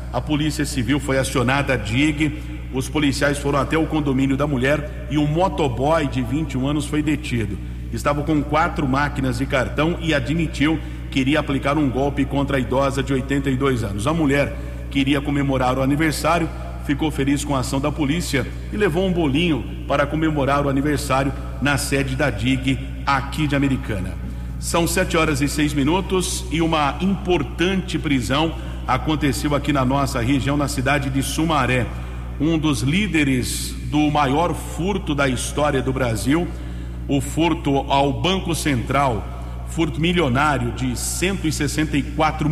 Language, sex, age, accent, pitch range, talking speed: English, male, 50-69, Brazilian, 130-150 Hz, 150 wpm